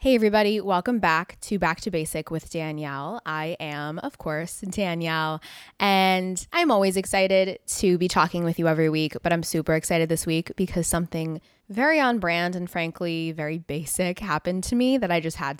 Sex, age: female, 20-39